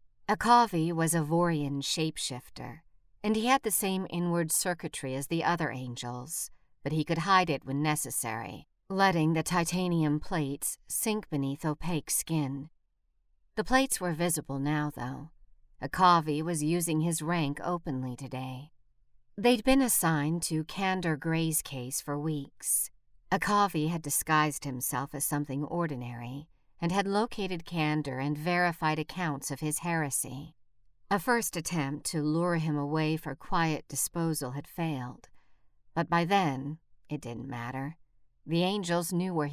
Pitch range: 135-175 Hz